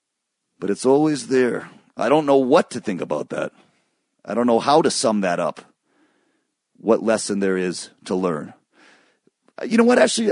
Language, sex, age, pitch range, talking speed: English, male, 40-59, 120-190 Hz, 175 wpm